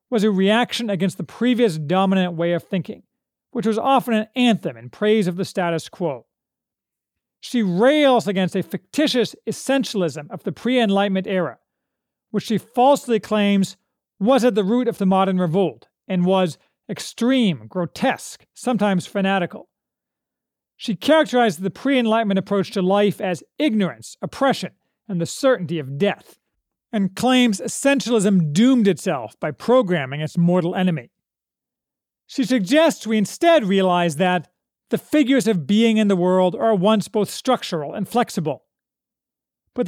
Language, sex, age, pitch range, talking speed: English, male, 40-59, 180-240 Hz, 140 wpm